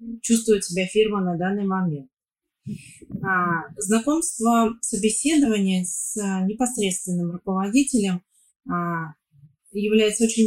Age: 30-49